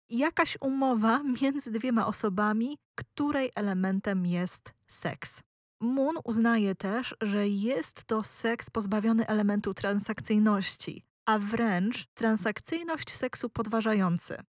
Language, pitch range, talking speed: Polish, 185-230 Hz, 100 wpm